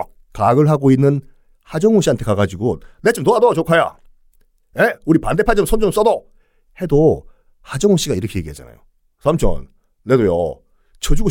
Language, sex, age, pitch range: Korean, male, 40-59, 130-220 Hz